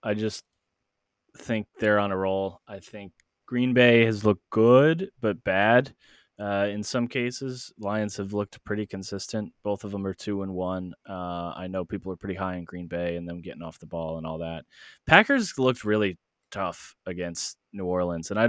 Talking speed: 190 wpm